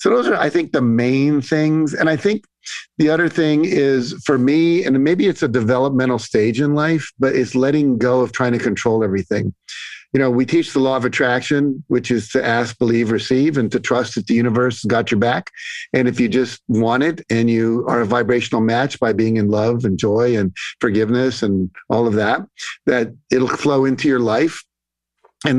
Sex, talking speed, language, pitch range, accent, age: male, 205 wpm, English, 115-140 Hz, American, 50-69